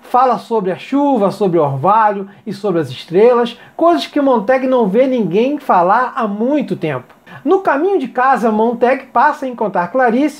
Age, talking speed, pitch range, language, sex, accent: 40-59, 175 wpm, 200-275 Hz, Portuguese, male, Brazilian